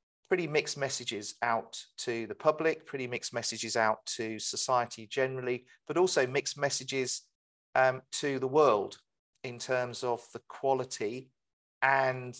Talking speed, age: 135 wpm, 40-59